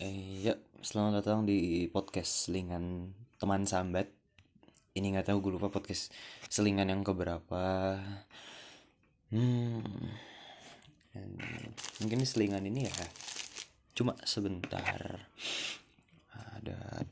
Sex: male